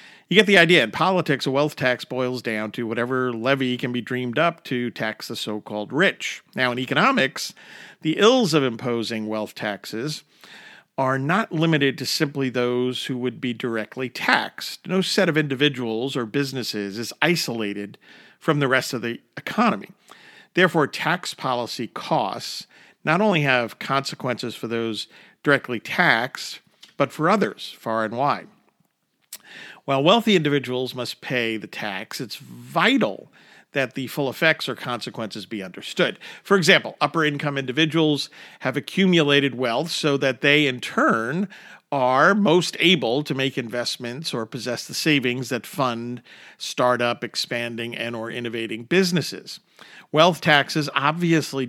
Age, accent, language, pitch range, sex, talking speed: 50-69, American, English, 120-150 Hz, male, 145 wpm